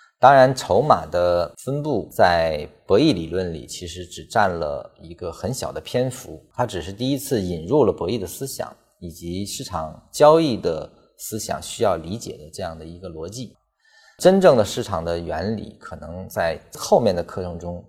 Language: Chinese